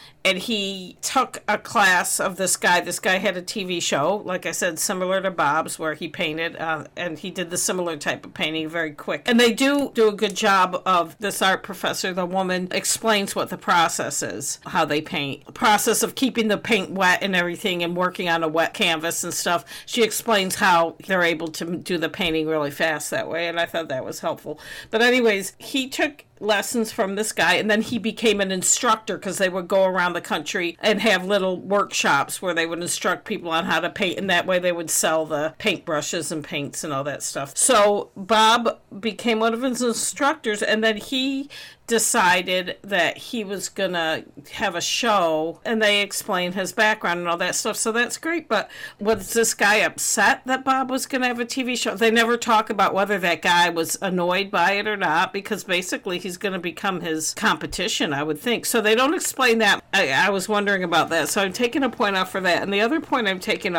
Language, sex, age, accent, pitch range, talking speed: English, female, 50-69, American, 175-220 Hz, 215 wpm